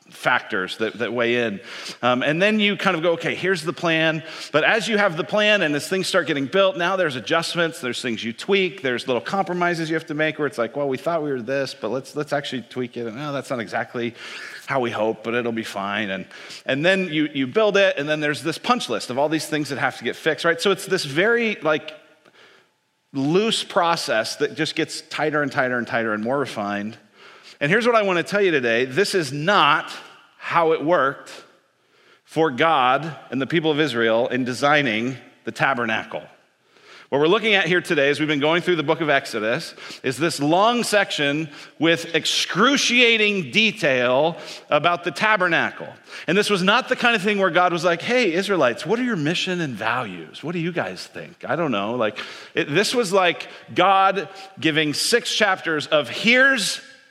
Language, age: English, 40-59